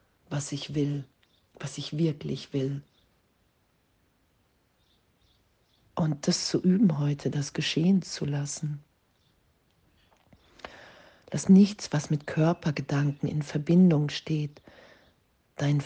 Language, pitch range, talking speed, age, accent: German, 140-160 Hz, 95 wpm, 40-59, German